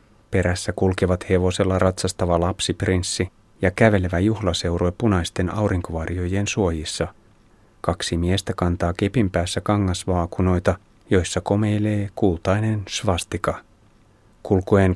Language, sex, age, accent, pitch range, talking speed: Finnish, male, 30-49, native, 90-110 Hz, 90 wpm